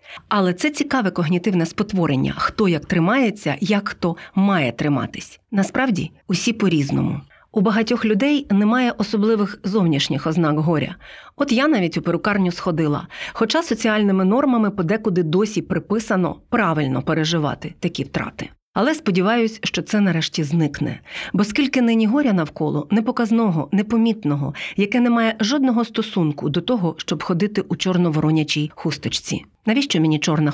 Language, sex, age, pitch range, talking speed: Ukrainian, female, 40-59, 165-225 Hz, 135 wpm